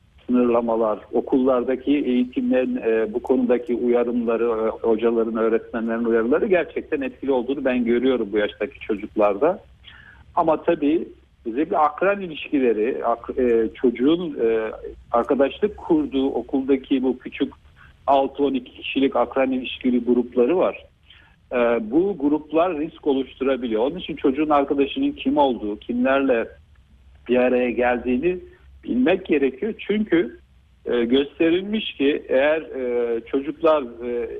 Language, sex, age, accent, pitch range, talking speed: Turkish, male, 50-69, native, 115-155 Hz, 100 wpm